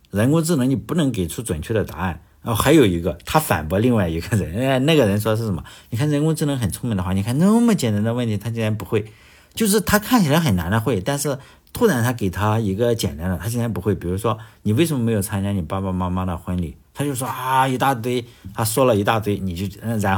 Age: 50-69